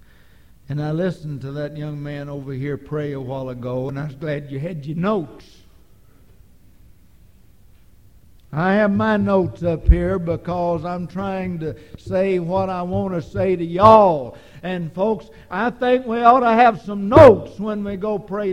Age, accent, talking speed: 60-79, American, 170 wpm